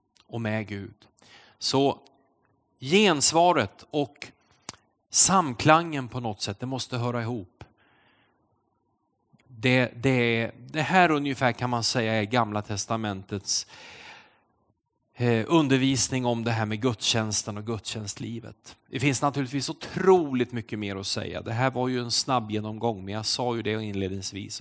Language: Swedish